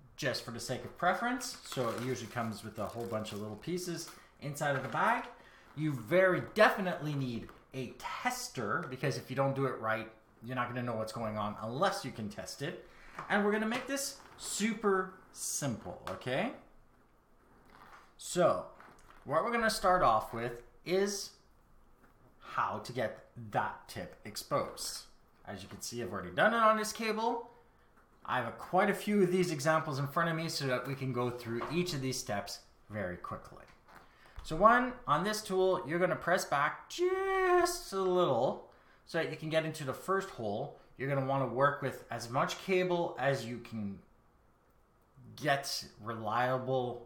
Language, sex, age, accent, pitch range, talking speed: English, male, 30-49, American, 120-185 Hz, 180 wpm